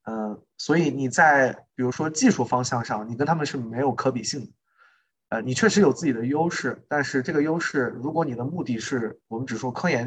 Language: Chinese